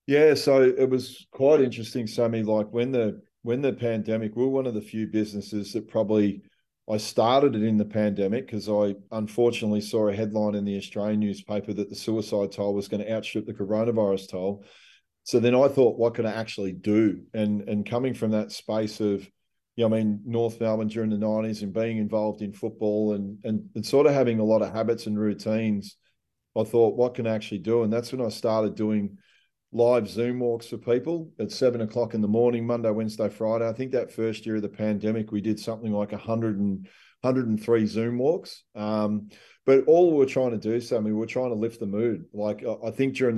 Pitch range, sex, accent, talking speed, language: 105-120 Hz, male, Australian, 215 wpm, English